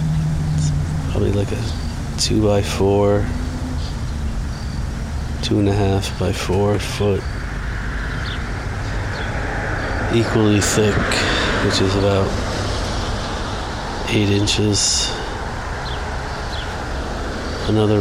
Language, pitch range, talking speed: English, 85-105 Hz, 45 wpm